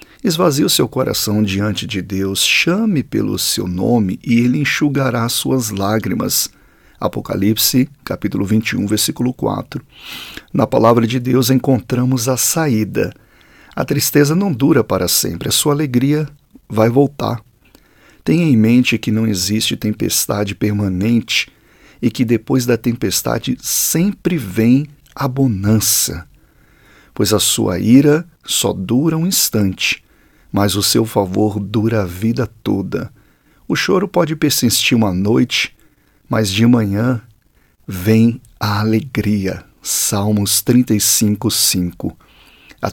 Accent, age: Brazilian, 50-69